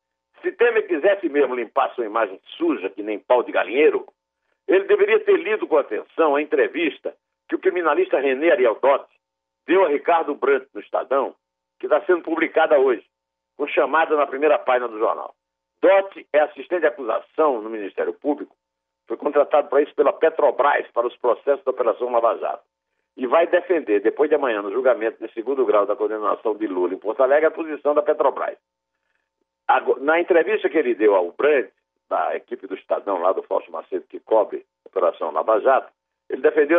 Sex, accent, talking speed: male, Brazilian, 180 wpm